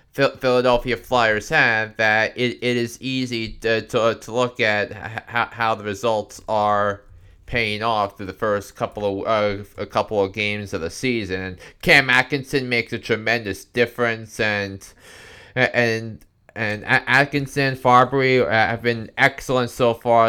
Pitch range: 115-135 Hz